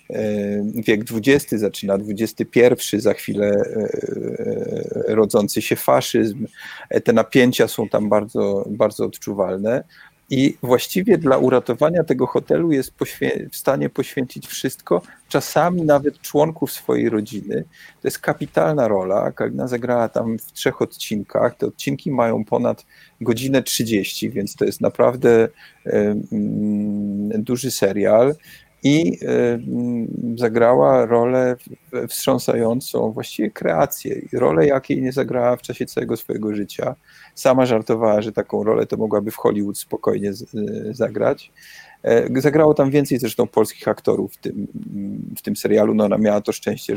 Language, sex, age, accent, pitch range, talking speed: Polish, male, 40-59, native, 105-130 Hz, 120 wpm